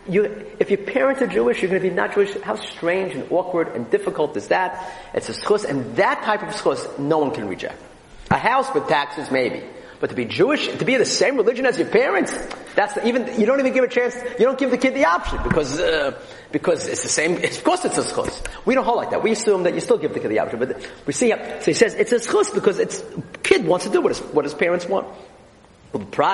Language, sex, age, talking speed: English, male, 40-59, 250 wpm